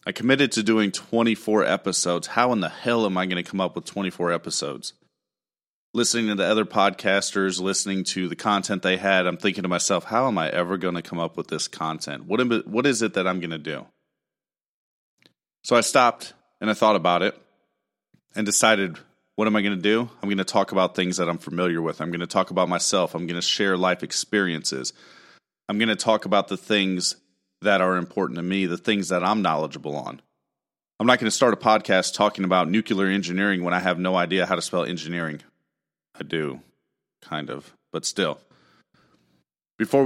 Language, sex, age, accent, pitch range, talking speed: English, male, 30-49, American, 90-105 Hz, 210 wpm